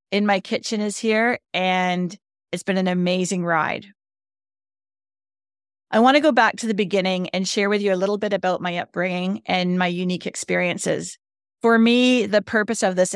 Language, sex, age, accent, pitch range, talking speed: English, female, 30-49, American, 170-205 Hz, 180 wpm